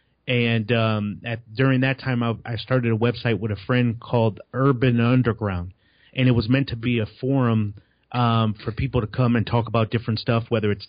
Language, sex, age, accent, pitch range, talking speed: English, male, 30-49, American, 110-130 Hz, 200 wpm